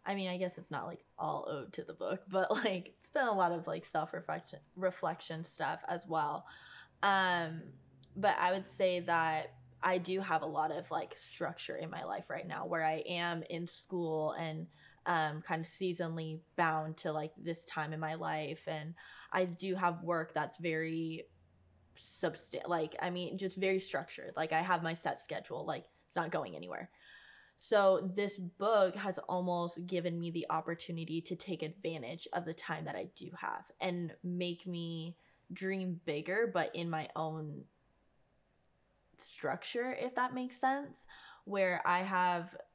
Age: 20-39